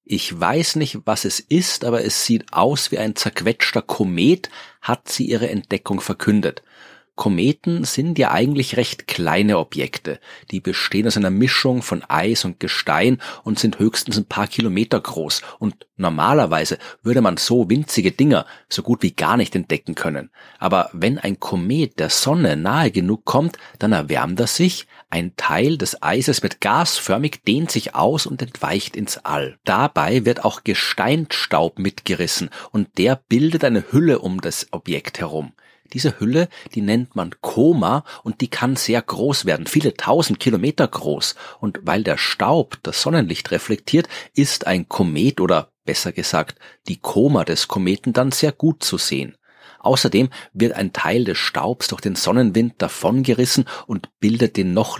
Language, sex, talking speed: German, male, 160 wpm